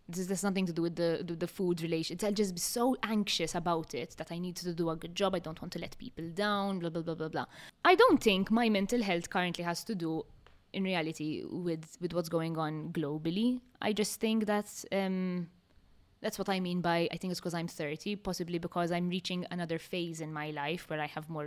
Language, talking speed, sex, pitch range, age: English, 235 wpm, female, 165-195 Hz, 20-39